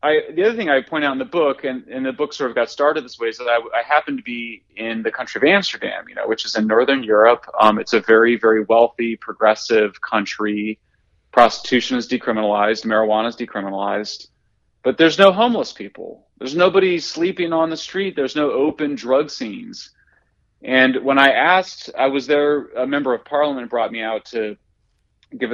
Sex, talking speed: male, 195 wpm